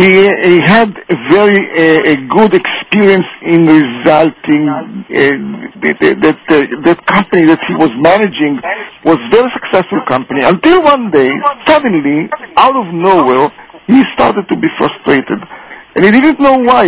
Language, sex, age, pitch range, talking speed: English, male, 50-69, 155-230 Hz, 145 wpm